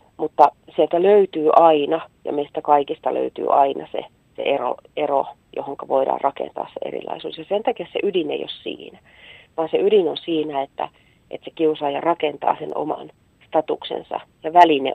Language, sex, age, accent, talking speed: Finnish, female, 40-59, native, 165 wpm